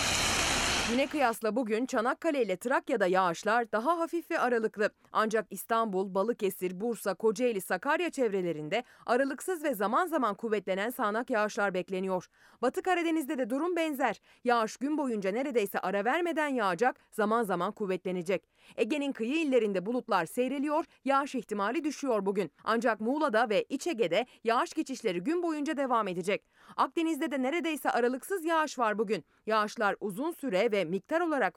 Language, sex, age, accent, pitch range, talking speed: Turkish, female, 30-49, native, 200-295 Hz, 140 wpm